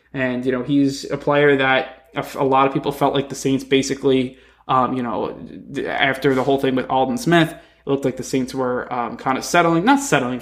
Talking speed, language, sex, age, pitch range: 220 wpm, English, male, 20-39, 130-140 Hz